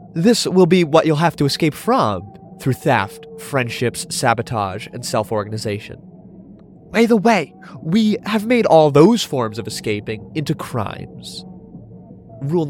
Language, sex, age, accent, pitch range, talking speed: English, male, 30-49, American, 120-190 Hz, 135 wpm